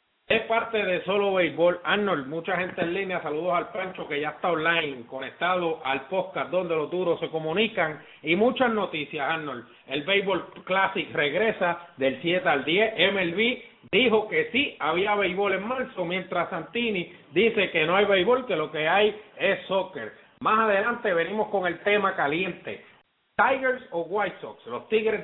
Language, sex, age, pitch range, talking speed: English, male, 30-49, 170-210 Hz, 170 wpm